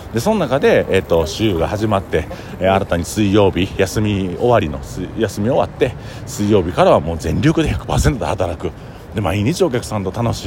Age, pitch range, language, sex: 40-59, 90-125 Hz, Japanese, male